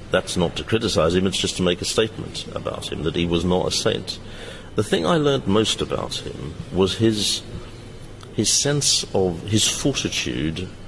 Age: 50-69